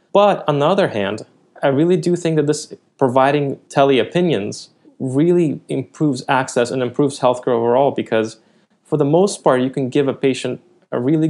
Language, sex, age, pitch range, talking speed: English, male, 20-39, 115-145 Hz, 170 wpm